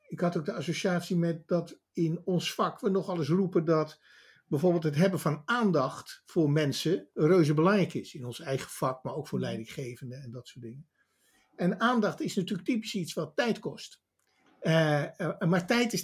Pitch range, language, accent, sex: 140-185 Hz, Dutch, Dutch, male